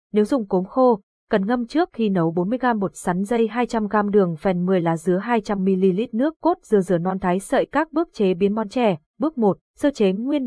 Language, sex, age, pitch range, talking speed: Vietnamese, female, 20-39, 180-240 Hz, 220 wpm